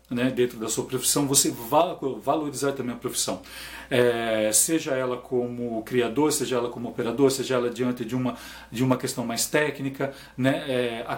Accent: Brazilian